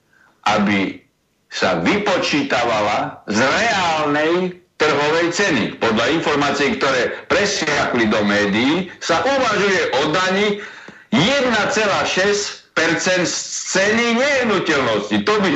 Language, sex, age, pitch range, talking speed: Slovak, male, 60-79, 170-250 Hz, 90 wpm